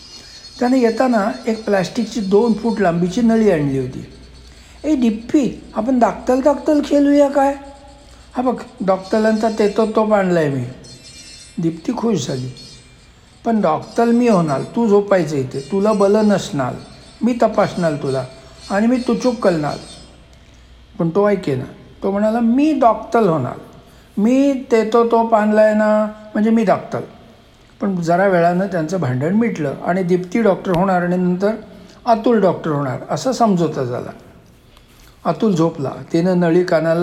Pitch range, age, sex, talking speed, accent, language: 165-230 Hz, 60-79, male, 140 wpm, native, Marathi